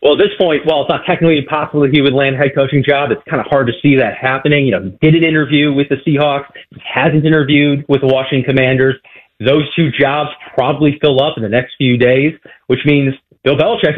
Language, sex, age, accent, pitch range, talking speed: English, male, 30-49, American, 135-165 Hz, 240 wpm